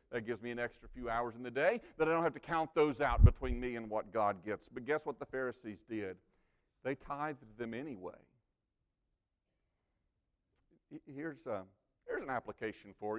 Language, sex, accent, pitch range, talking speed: English, male, American, 110-170 Hz, 180 wpm